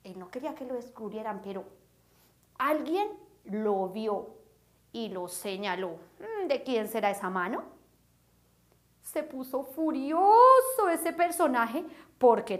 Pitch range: 230-330 Hz